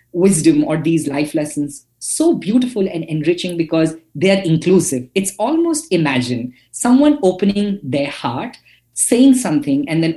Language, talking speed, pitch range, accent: English, 140 wpm, 135-205 Hz, Indian